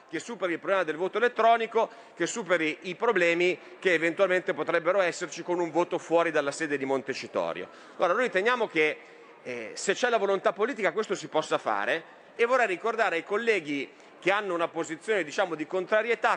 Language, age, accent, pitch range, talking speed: Italian, 30-49, native, 170-225 Hz, 175 wpm